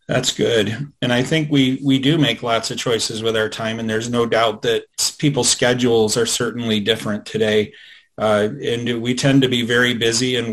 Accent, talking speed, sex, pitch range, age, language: American, 200 wpm, male, 115-140 Hz, 40-59, English